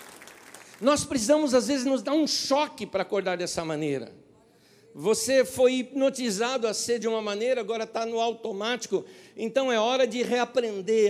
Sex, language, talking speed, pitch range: male, Portuguese, 155 wpm, 170-250 Hz